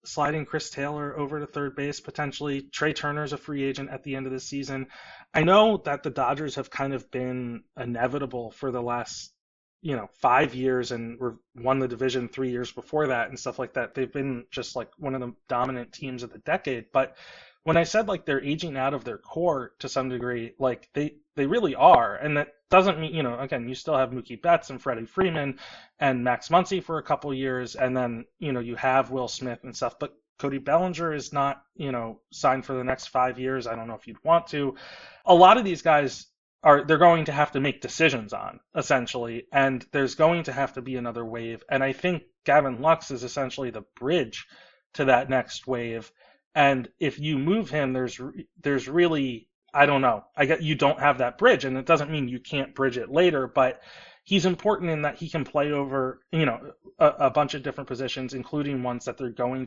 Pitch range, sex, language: 125-150 Hz, male, English